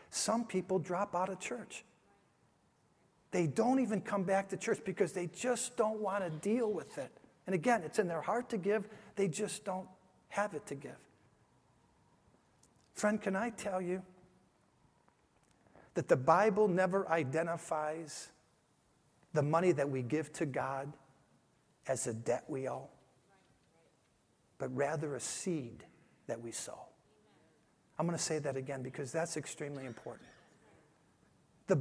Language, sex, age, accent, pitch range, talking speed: English, male, 50-69, American, 155-210 Hz, 145 wpm